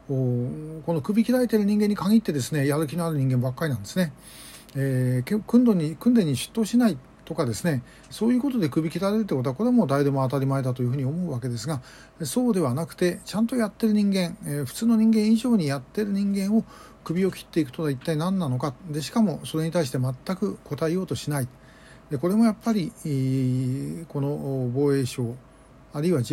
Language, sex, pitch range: Japanese, male, 135-190 Hz